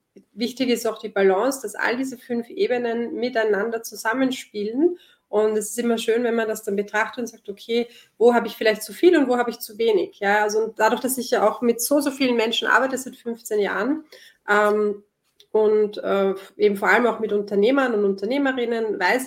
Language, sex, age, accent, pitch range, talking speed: German, female, 30-49, German, 210-250 Hz, 200 wpm